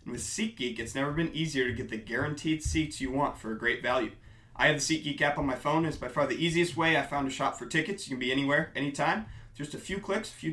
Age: 30-49